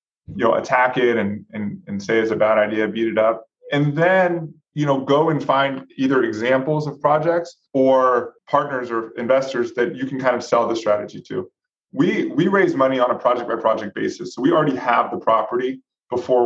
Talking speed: 205 wpm